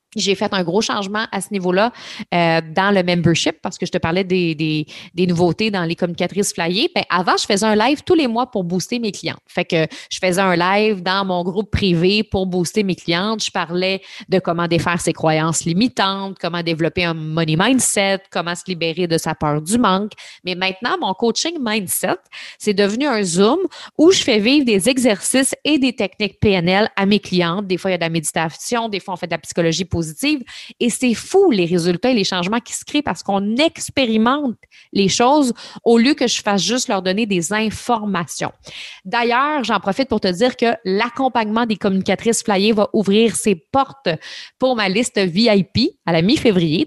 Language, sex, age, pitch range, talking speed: French, female, 30-49, 180-225 Hz, 200 wpm